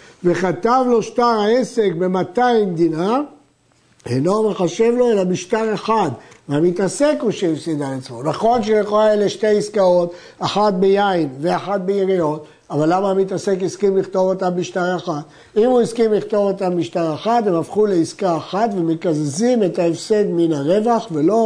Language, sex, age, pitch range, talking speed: Hebrew, male, 60-79, 165-210 Hz, 145 wpm